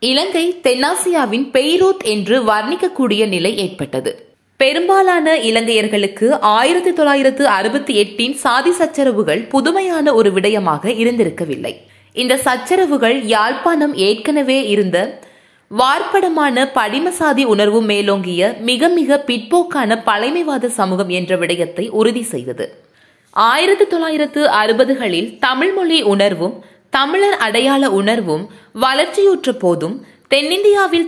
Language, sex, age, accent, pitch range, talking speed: Tamil, female, 20-39, native, 215-315 Hz, 90 wpm